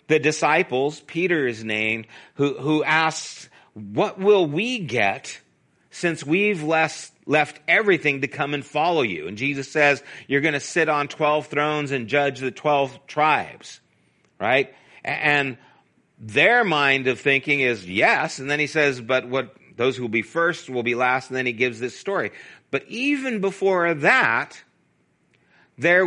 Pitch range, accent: 130-175 Hz, American